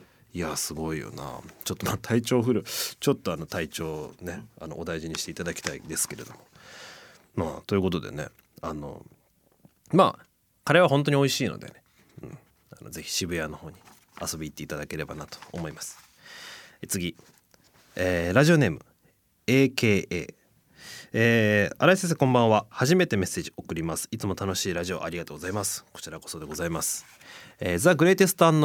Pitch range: 100-145 Hz